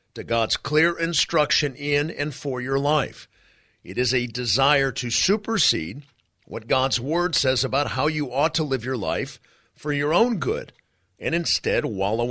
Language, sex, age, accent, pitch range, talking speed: English, male, 50-69, American, 115-155 Hz, 165 wpm